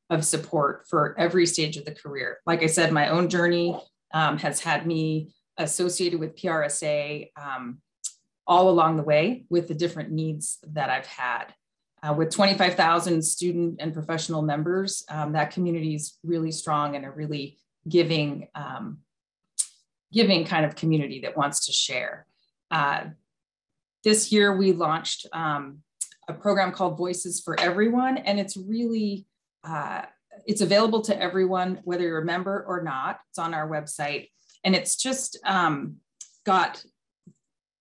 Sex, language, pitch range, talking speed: female, English, 155-190 Hz, 150 wpm